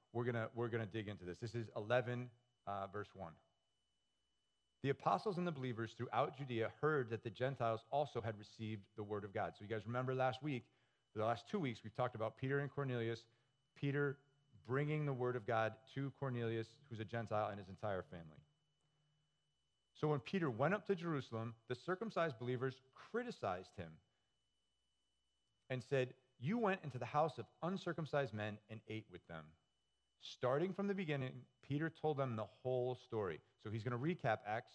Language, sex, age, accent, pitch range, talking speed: English, male, 40-59, American, 105-140 Hz, 180 wpm